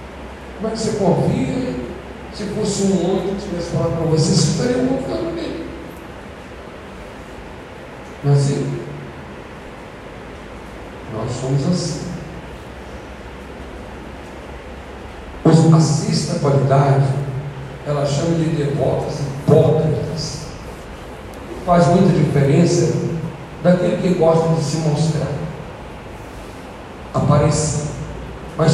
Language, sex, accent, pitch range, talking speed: Portuguese, male, Brazilian, 130-170 Hz, 85 wpm